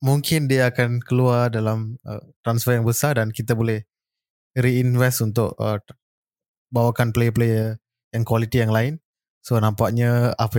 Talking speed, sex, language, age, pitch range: 135 wpm, male, Malay, 20-39, 115-135 Hz